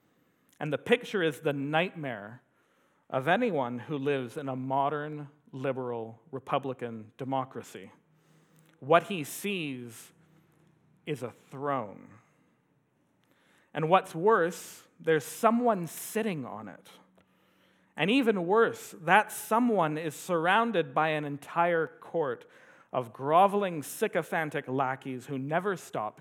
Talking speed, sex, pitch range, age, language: 110 wpm, male, 130-165 Hz, 40-59, English